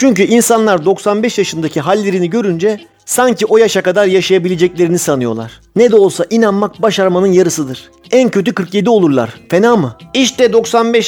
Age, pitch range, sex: 40-59, 170-225 Hz, male